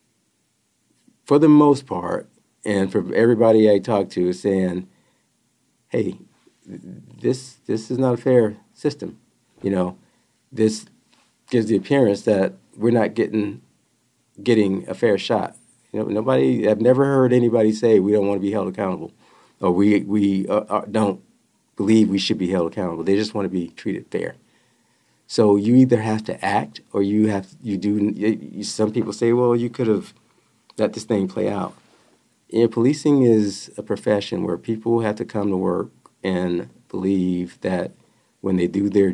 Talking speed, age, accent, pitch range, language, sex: 165 wpm, 50-69, American, 95-115 Hz, English, male